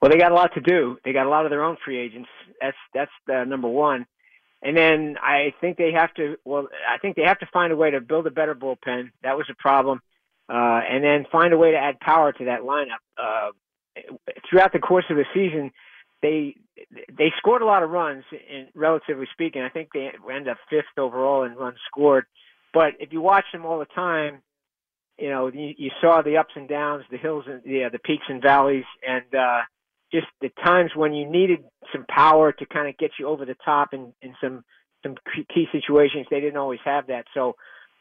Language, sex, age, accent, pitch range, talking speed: English, male, 50-69, American, 135-160 Hz, 225 wpm